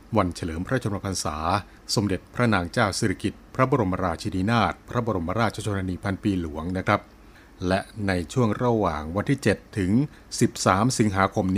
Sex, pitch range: male, 90-110 Hz